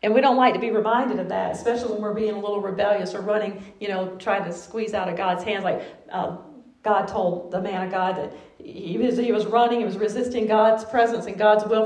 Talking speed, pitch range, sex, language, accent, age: 245 wpm, 210-255 Hz, female, English, American, 40-59